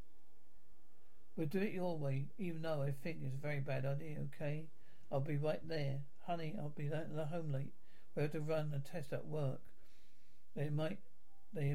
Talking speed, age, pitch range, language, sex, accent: 200 wpm, 60-79, 140-165 Hz, English, male, British